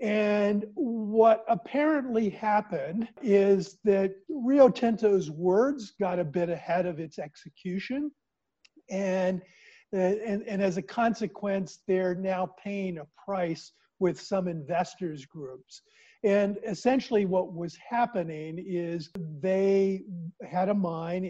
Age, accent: 50-69, American